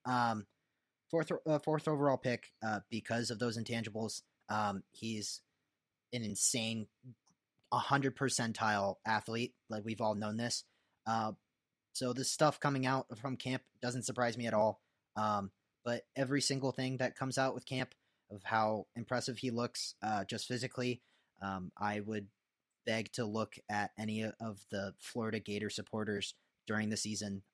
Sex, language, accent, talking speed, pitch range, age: male, English, American, 155 wpm, 105-130 Hz, 30-49